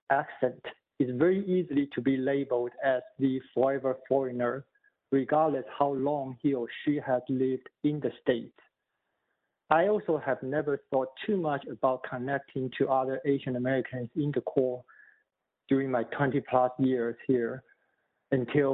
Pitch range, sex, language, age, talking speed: 130-145 Hz, male, English, 50-69, 145 wpm